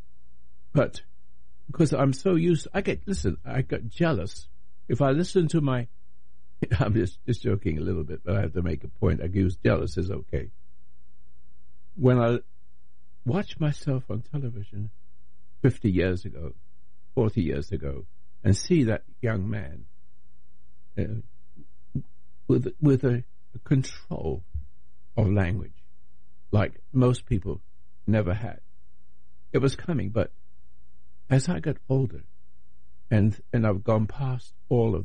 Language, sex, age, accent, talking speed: English, male, 60-79, American, 135 wpm